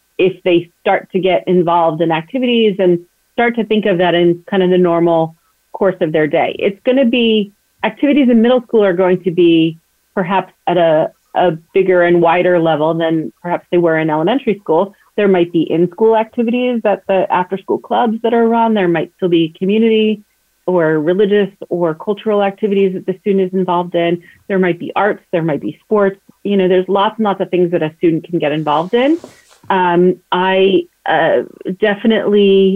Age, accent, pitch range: 30-49, American, 175-220 Hz